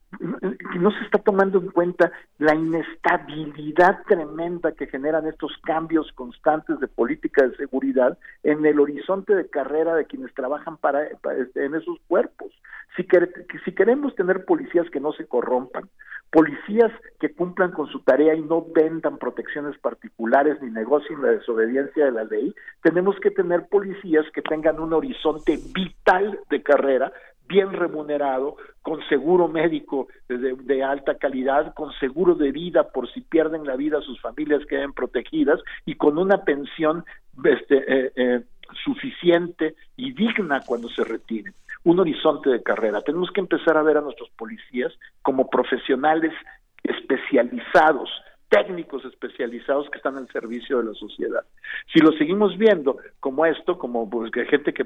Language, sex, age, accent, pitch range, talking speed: Spanish, male, 50-69, Mexican, 140-185 Hz, 155 wpm